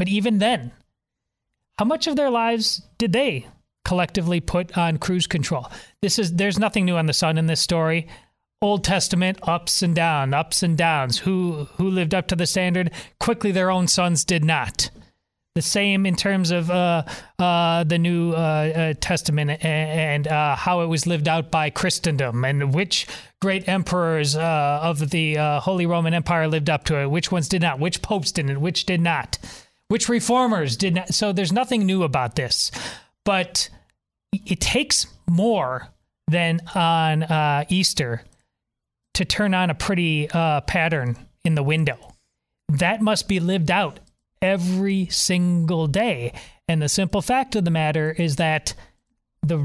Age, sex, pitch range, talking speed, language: 30-49, male, 155-195 Hz, 170 wpm, English